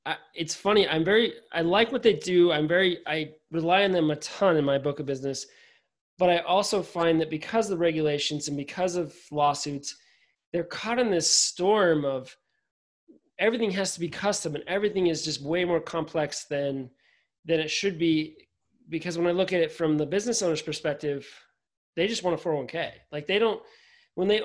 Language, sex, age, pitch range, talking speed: English, male, 20-39, 150-185 Hz, 195 wpm